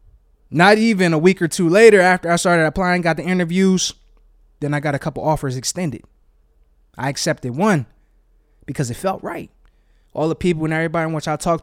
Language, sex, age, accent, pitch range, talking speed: English, male, 20-39, American, 150-200 Hz, 190 wpm